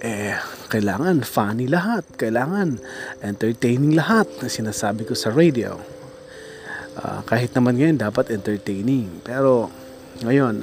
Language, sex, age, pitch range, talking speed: Filipino, male, 20-39, 110-170 Hz, 115 wpm